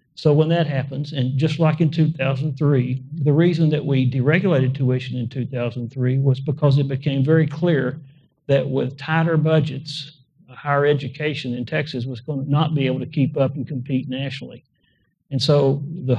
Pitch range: 130-145 Hz